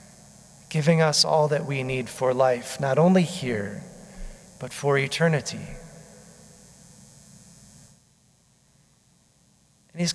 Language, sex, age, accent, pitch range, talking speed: English, male, 40-59, American, 130-160 Hz, 95 wpm